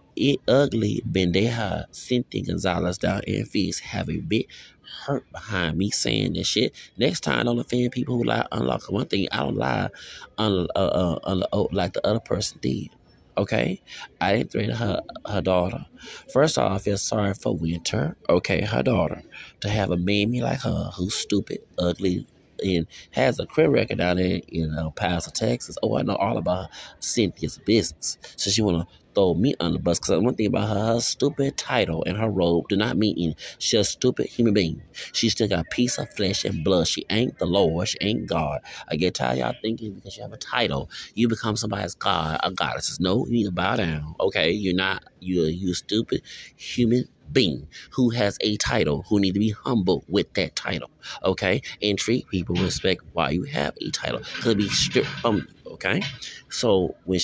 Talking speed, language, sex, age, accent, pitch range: 200 wpm, English, male, 30-49, American, 90-115 Hz